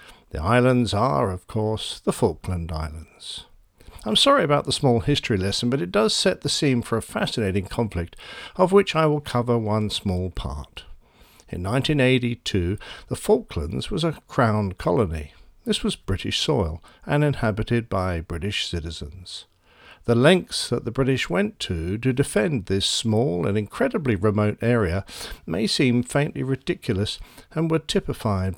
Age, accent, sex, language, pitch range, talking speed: 50-69, British, male, English, 95-140 Hz, 150 wpm